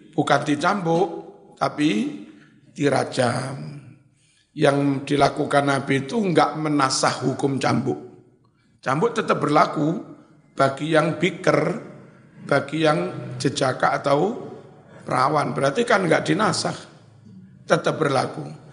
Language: Indonesian